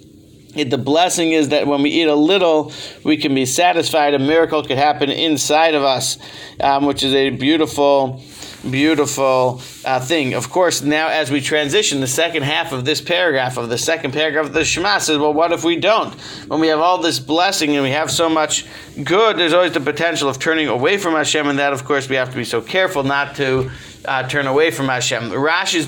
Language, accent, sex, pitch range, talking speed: English, American, male, 135-165 Hz, 215 wpm